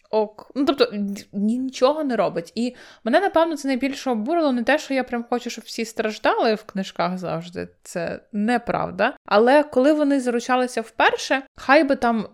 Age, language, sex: 20-39, Ukrainian, female